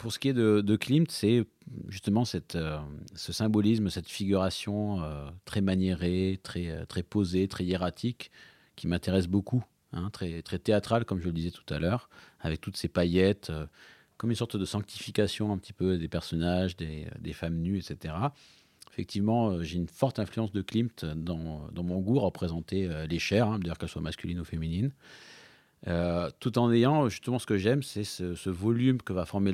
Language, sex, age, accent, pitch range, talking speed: French, male, 40-59, French, 90-110 Hz, 195 wpm